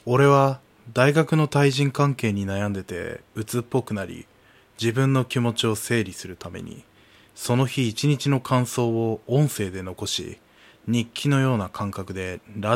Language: Japanese